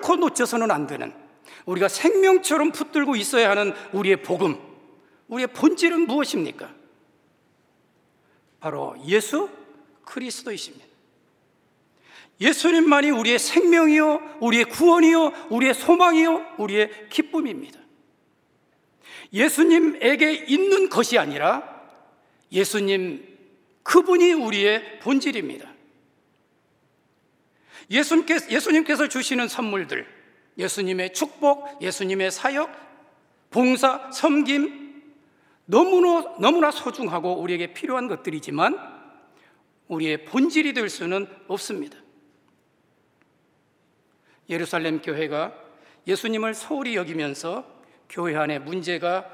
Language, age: Korean, 40-59